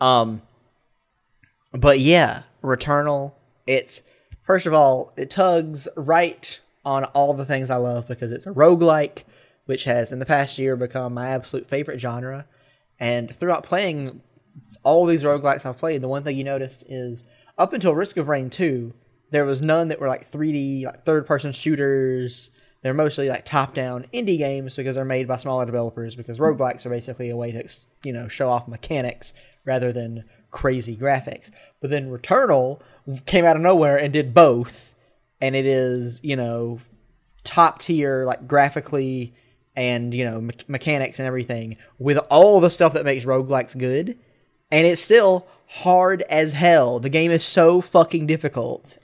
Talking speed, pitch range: 165 wpm, 125-150 Hz